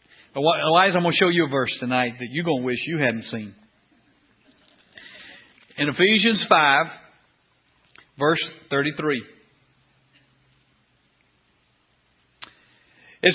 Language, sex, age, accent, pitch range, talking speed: English, male, 50-69, American, 170-240 Hz, 105 wpm